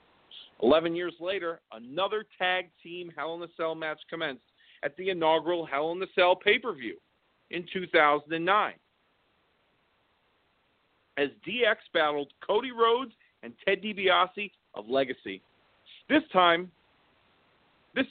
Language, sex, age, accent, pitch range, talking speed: English, male, 40-59, American, 165-205 Hz, 115 wpm